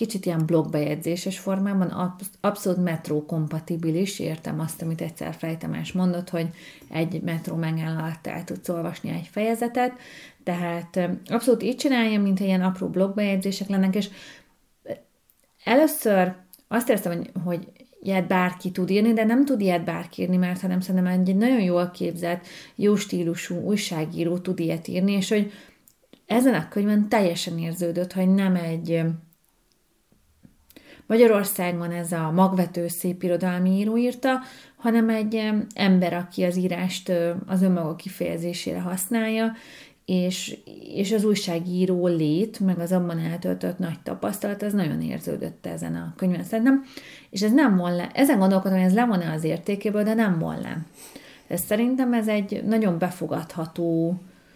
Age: 30-49